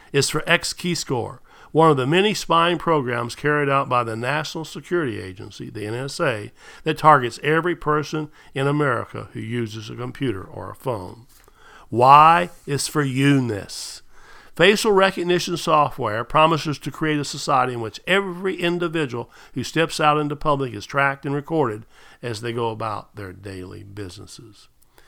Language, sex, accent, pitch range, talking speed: English, male, American, 115-160 Hz, 150 wpm